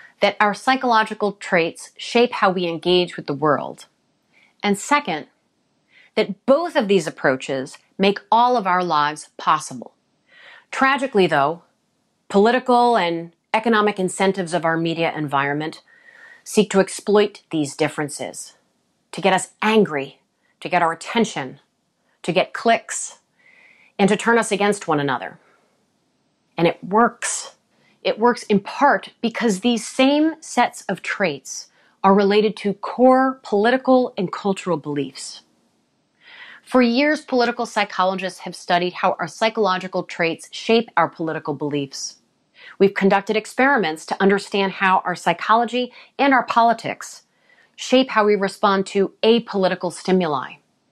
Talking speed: 130 wpm